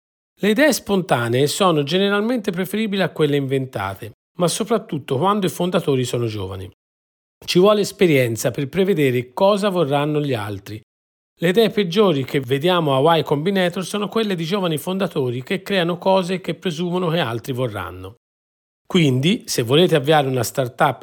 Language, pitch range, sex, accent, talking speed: Italian, 125-190 Hz, male, native, 150 wpm